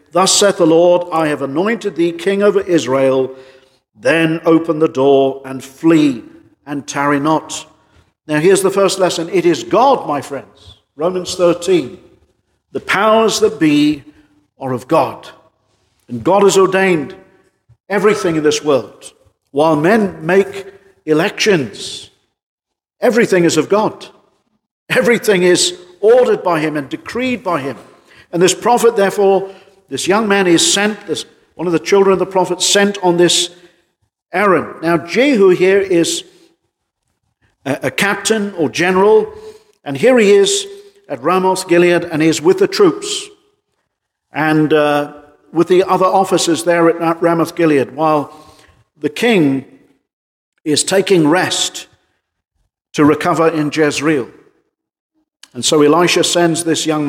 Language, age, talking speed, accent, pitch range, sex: English, 50-69, 140 wpm, British, 155-200 Hz, male